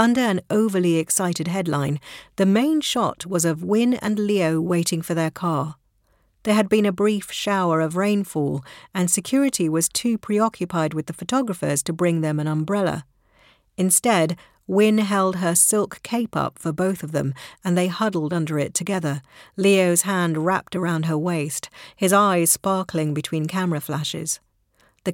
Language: English